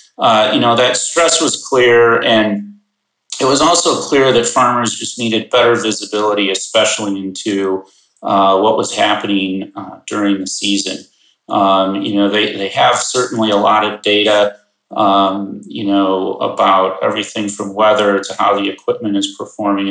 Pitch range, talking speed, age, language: 100-110 Hz, 155 wpm, 30-49, English